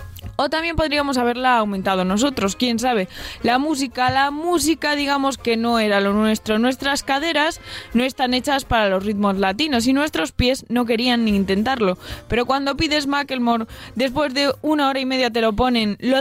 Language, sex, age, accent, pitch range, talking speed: Spanish, female, 20-39, Spanish, 210-270 Hz, 180 wpm